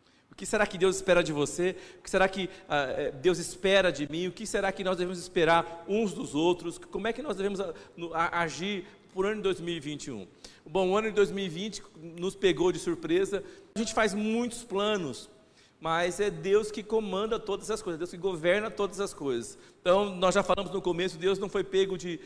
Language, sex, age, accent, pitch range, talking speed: Portuguese, male, 40-59, Brazilian, 170-205 Hz, 205 wpm